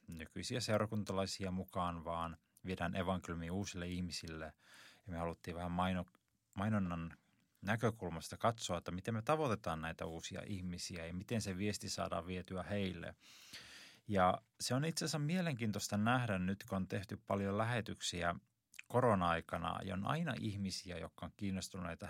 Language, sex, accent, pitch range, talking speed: Finnish, male, native, 90-110 Hz, 135 wpm